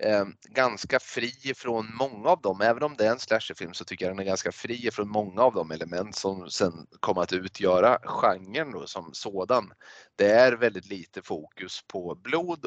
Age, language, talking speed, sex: 30-49, Swedish, 195 wpm, male